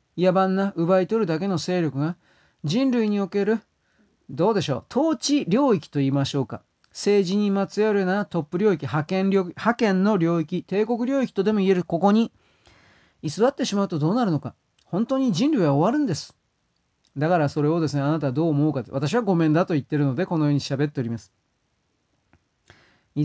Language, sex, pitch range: Japanese, male, 150-195 Hz